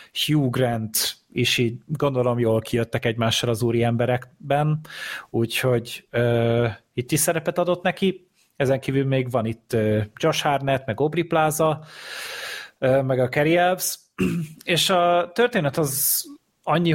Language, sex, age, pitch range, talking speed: Hungarian, male, 30-49, 115-150 Hz, 130 wpm